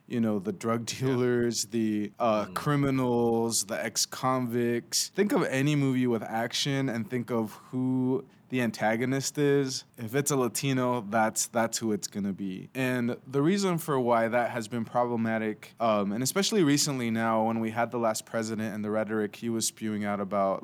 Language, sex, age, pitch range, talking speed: English, male, 20-39, 110-130 Hz, 180 wpm